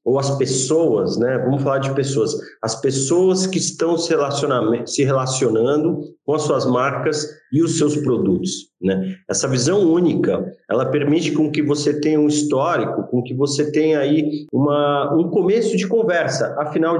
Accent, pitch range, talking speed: Brazilian, 125-160 Hz, 160 wpm